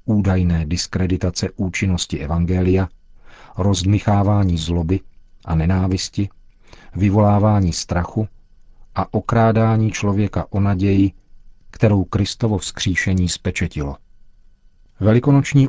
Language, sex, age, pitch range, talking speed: Czech, male, 50-69, 90-100 Hz, 75 wpm